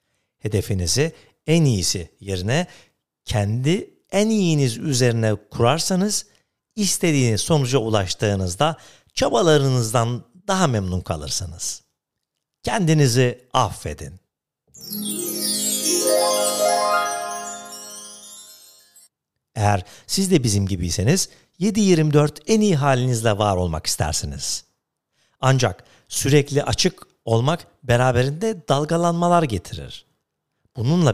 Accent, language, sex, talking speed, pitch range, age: native, Turkish, male, 75 wpm, 100-155 Hz, 60-79